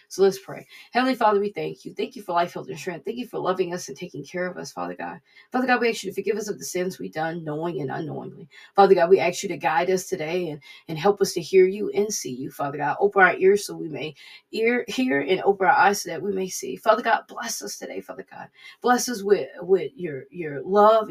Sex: female